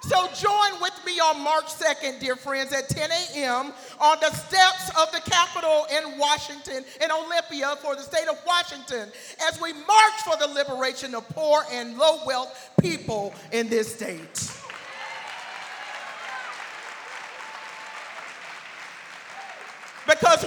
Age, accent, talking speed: 40-59, American, 125 wpm